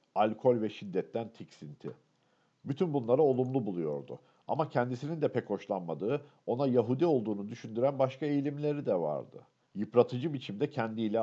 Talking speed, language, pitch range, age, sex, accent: 130 wpm, Turkish, 105-135 Hz, 50-69, male, native